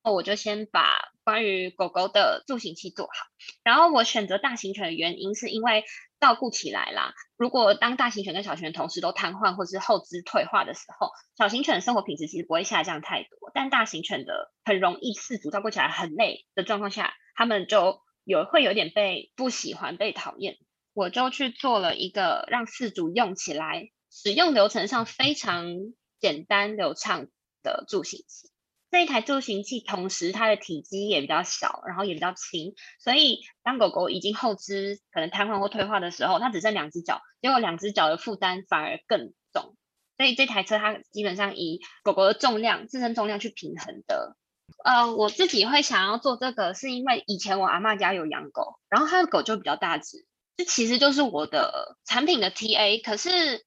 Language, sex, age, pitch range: Chinese, female, 20-39, 195-270 Hz